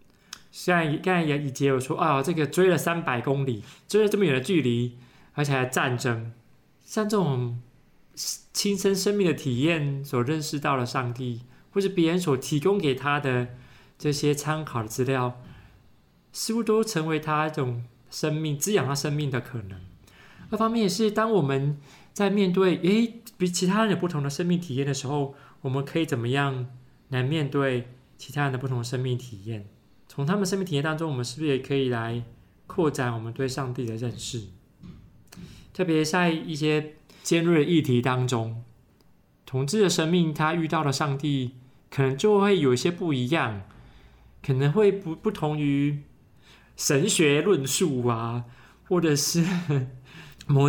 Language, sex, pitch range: Chinese, male, 125-170 Hz